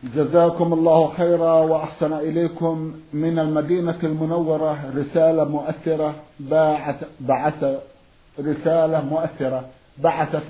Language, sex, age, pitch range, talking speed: Arabic, male, 50-69, 140-160 Hz, 80 wpm